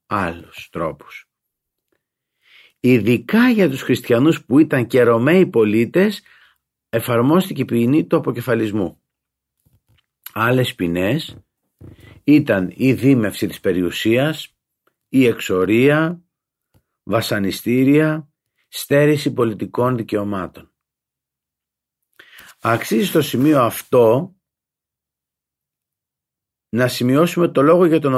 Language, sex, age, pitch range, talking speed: Greek, male, 50-69, 110-155 Hz, 80 wpm